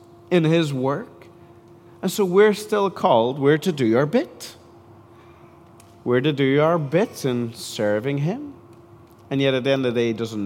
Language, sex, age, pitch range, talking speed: English, male, 40-59, 115-150 Hz, 180 wpm